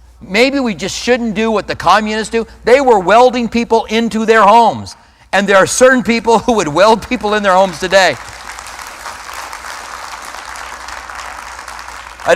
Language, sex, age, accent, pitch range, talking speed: English, male, 40-59, American, 145-215 Hz, 145 wpm